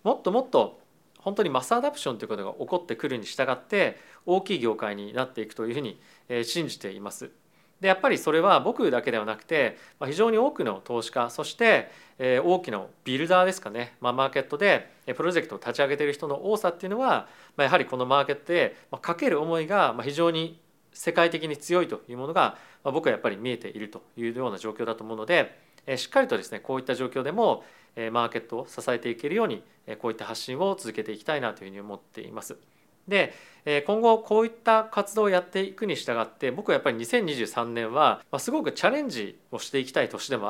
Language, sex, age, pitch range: Japanese, male, 40-59, 120-195 Hz